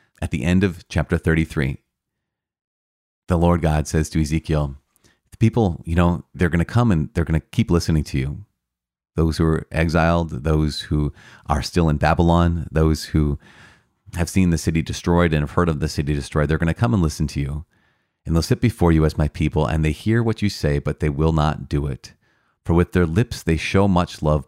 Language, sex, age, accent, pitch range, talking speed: English, male, 30-49, American, 75-95 Hz, 215 wpm